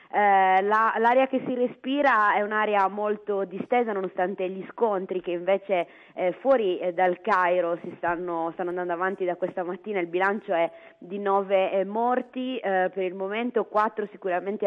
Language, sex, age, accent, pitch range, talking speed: Italian, female, 20-39, native, 180-205 Hz, 170 wpm